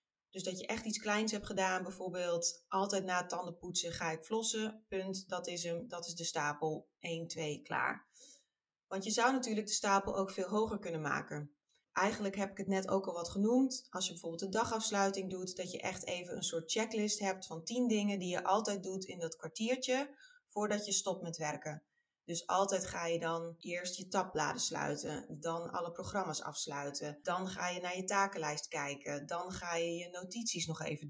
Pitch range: 170-200 Hz